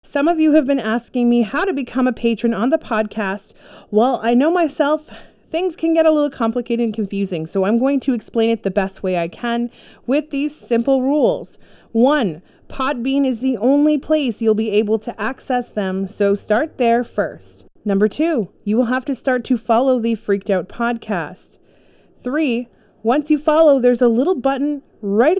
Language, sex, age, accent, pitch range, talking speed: English, female, 30-49, American, 215-265 Hz, 190 wpm